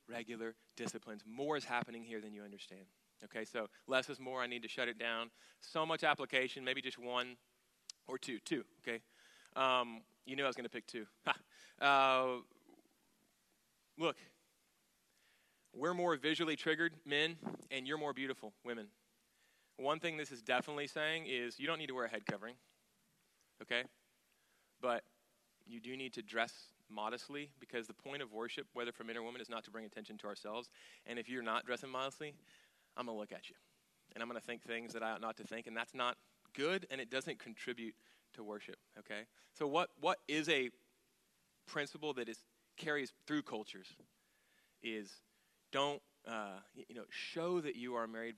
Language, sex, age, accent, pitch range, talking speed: English, male, 30-49, American, 115-145 Hz, 185 wpm